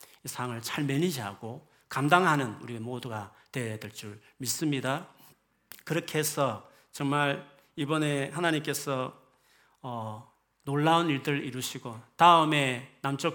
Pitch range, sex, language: 120-165 Hz, male, Korean